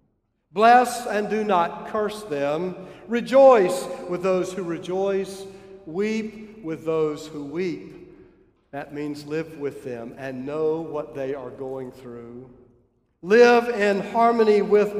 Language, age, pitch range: English, 50-69, 150-225 Hz